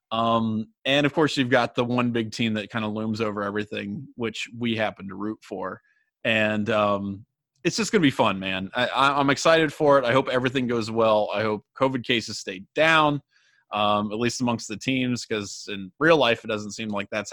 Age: 30-49